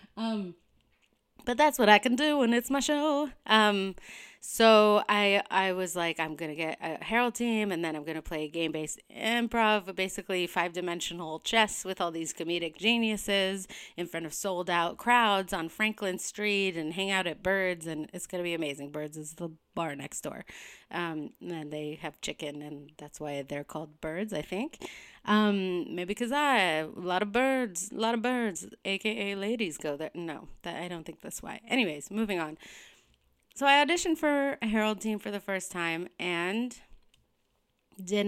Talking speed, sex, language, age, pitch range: 190 wpm, female, English, 30-49, 170-225 Hz